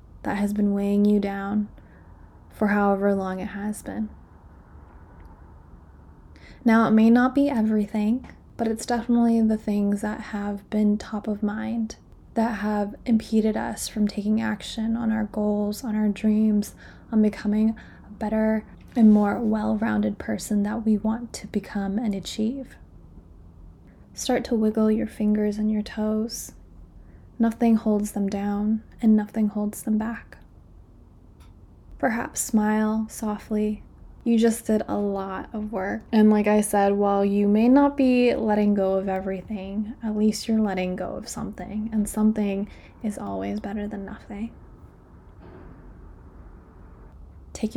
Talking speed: 140 wpm